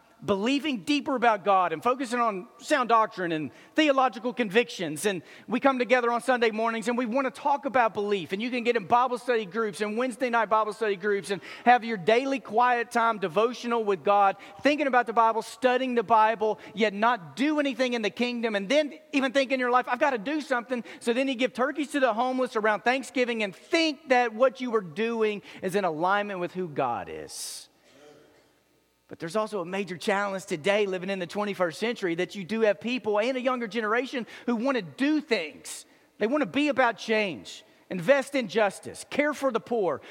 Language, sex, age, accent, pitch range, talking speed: English, male, 40-59, American, 200-255 Hz, 205 wpm